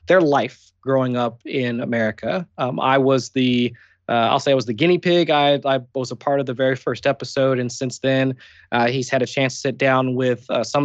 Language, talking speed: English, 230 wpm